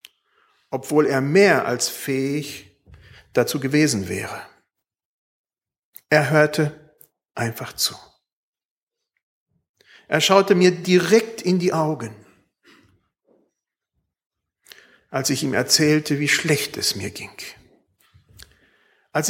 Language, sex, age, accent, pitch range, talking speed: German, male, 50-69, German, 135-190 Hz, 90 wpm